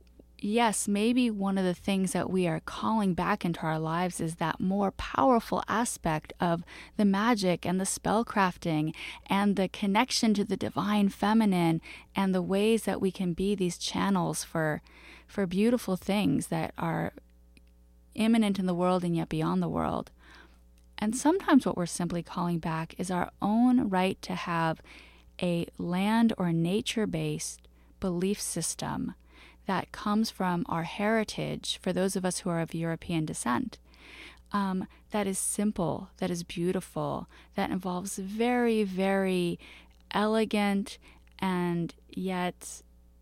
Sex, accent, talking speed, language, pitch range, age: female, American, 145 wpm, English, 170-210 Hz, 30-49